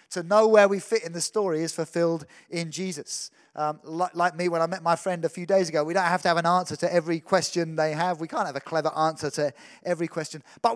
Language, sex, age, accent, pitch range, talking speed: English, male, 30-49, British, 155-185 Hz, 260 wpm